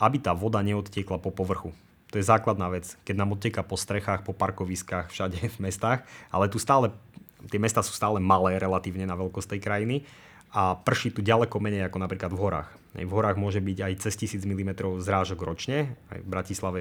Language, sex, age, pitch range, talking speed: Slovak, male, 20-39, 95-115 Hz, 195 wpm